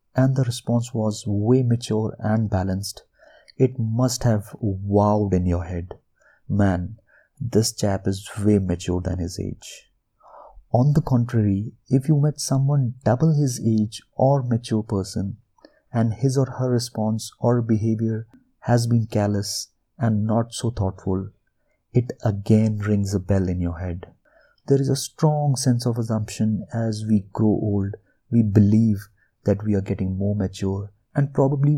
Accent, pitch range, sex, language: native, 105-125 Hz, male, Hindi